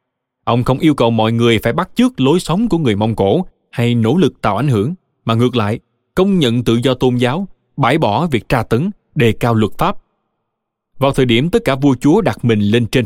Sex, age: male, 20-39